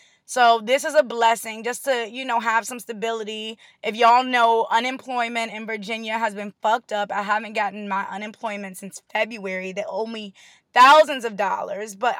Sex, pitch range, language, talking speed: female, 205-285 Hz, English, 175 wpm